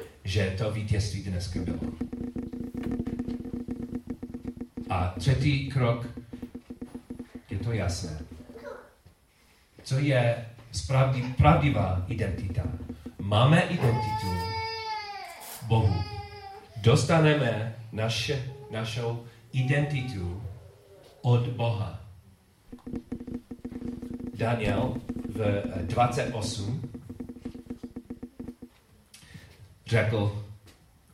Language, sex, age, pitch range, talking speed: Czech, male, 40-59, 95-135 Hz, 55 wpm